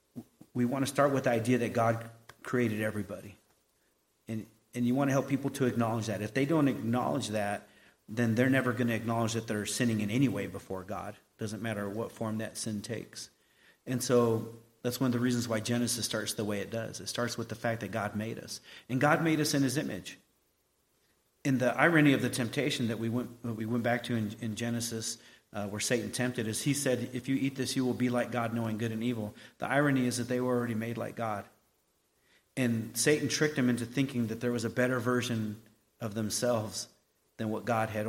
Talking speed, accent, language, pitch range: 220 wpm, American, English, 110-125 Hz